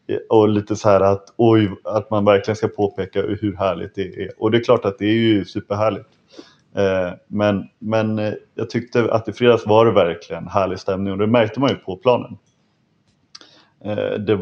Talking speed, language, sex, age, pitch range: 185 wpm, English, male, 30-49, 100-120 Hz